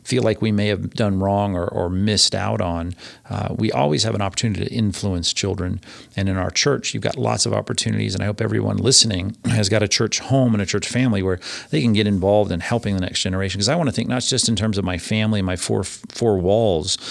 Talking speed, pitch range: 245 wpm, 95-115 Hz